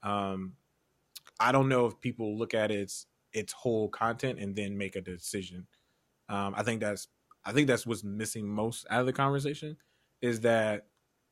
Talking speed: 180 wpm